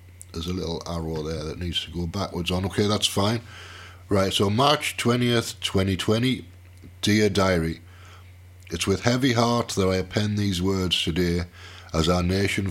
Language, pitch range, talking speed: English, 90-100 Hz, 160 wpm